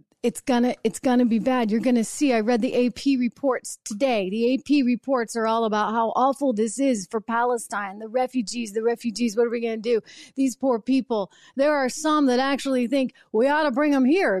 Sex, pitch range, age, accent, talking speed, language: female, 195-270 Hz, 40-59, American, 225 wpm, English